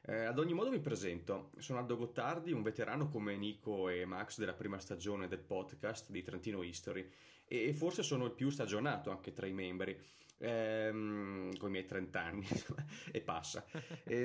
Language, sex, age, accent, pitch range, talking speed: Italian, male, 30-49, native, 95-140 Hz, 175 wpm